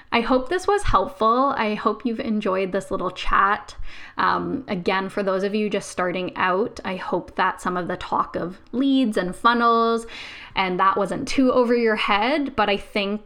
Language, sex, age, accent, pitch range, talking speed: English, female, 10-29, American, 180-220 Hz, 190 wpm